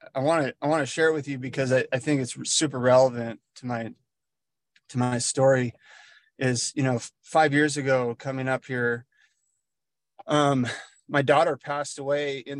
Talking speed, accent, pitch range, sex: 175 wpm, American, 130-155 Hz, male